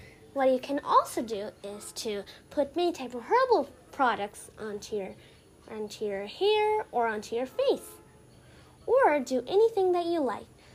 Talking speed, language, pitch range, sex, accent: 155 wpm, English, 235-360 Hz, female, American